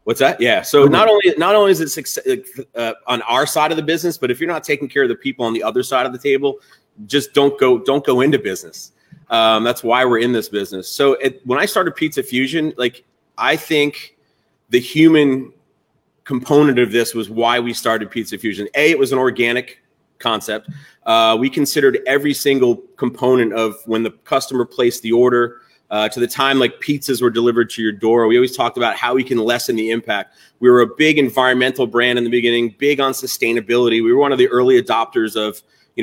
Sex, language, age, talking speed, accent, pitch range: male, English, 30-49, 215 wpm, American, 115-150 Hz